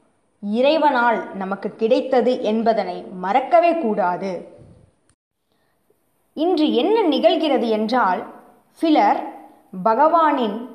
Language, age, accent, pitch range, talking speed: Tamil, 20-39, native, 220-300 Hz, 65 wpm